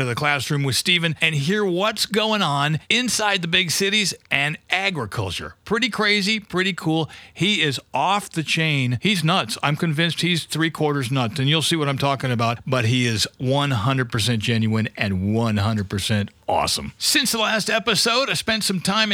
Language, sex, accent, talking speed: English, male, American, 175 wpm